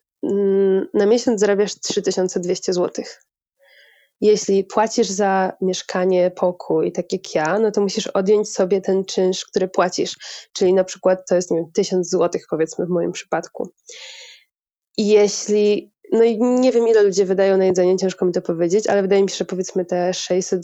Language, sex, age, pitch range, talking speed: Polish, female, 20-39, 195-245 Hz, 160 wpm